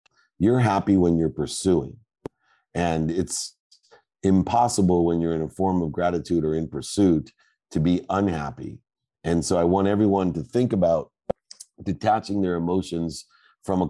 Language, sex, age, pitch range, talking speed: English, male, 50-69, 80-95 Hz, 145 wpm